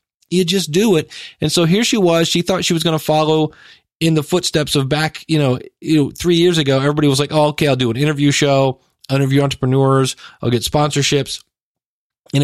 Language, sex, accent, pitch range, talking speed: English, male, American, 135-170 Hz, 205 wpm